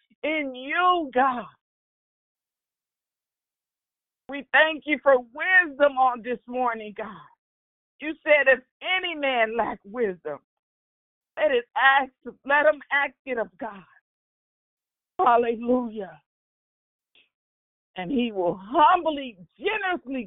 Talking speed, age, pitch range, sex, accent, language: 95 wpm, 50-69, 220-300 Hz, female, American, English